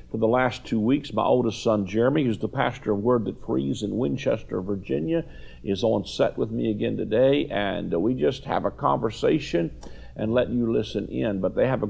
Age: 50-69